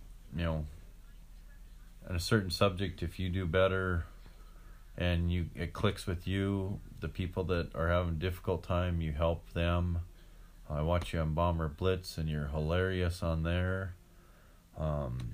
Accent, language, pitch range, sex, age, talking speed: American, English, 85-95 Hz, male, 40-59, 155 wpm